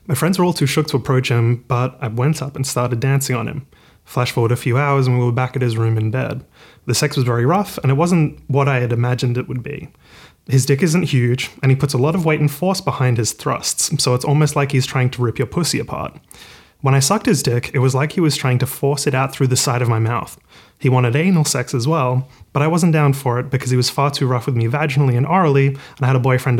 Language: English